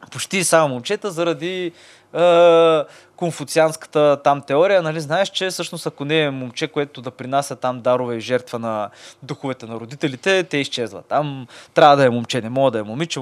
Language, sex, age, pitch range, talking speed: Bulgarian, male, 20-39, 130-190 Hz, 175 wpm